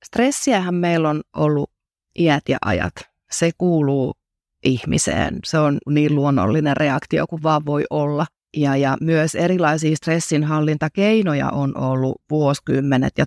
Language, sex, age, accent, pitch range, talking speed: Finnish, female, 30-49, native, 145-185 Hz, 125 wpm